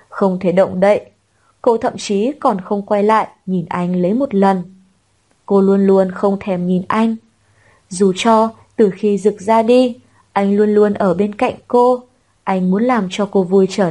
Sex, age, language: female, 20-39, Vietnamese